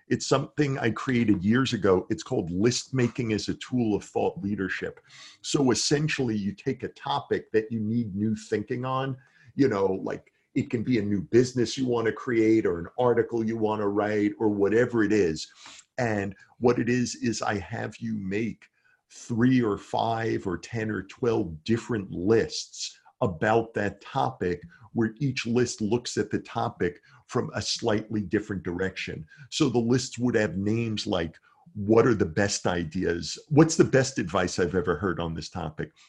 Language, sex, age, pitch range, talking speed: English, male, 50-69, 100-125 Hz, 180 wpm